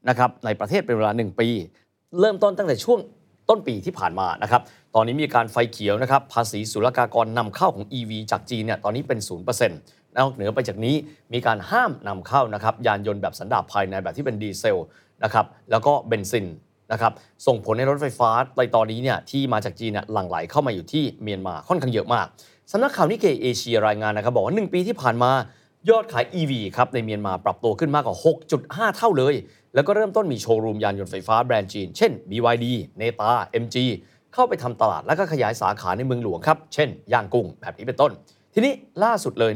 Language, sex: Thai, male